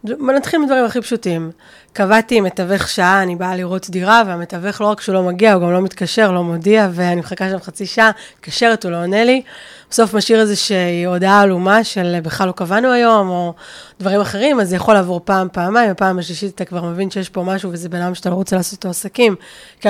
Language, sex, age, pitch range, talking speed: Hebrew, female, 20-39, 180-215 Hz, 210 wpm